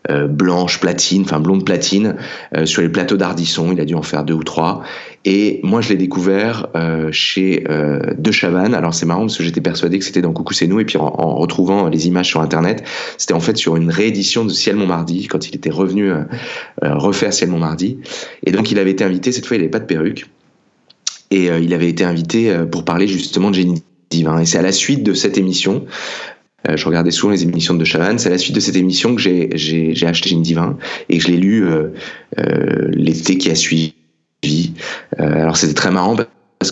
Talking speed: 230 wpm